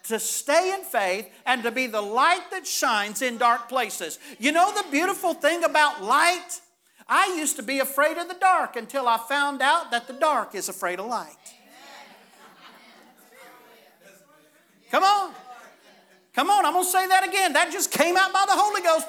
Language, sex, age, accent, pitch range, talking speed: English, male, 50-69, American, 205-335 Hz, 180 wpm